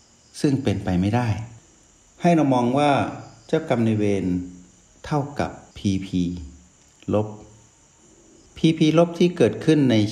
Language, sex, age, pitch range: Thai, male, 60-79, 95-125 Hz